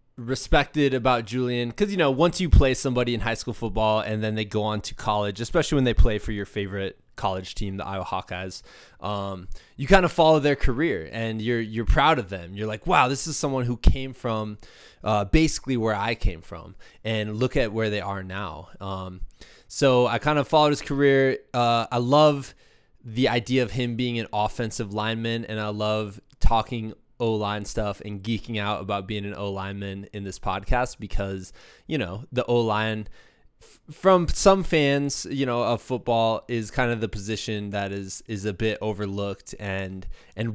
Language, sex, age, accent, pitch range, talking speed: English, male, 20-39, American, 100-120 Hz, 190 wpm